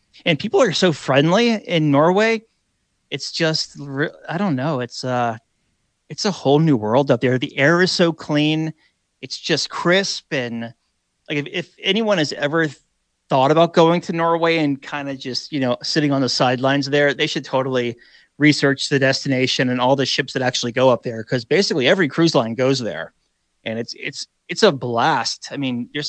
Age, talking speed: 30-49, 190 wpm